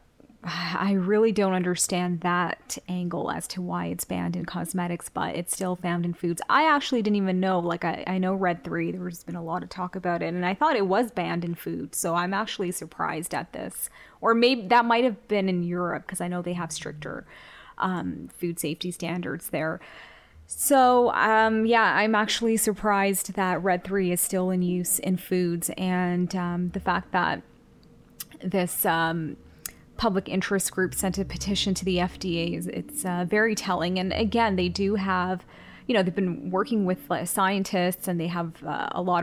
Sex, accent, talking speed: female, American, 190 wpm